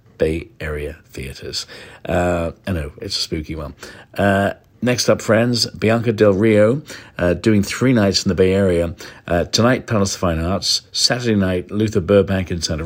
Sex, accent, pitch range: male, British, 85-105 Hz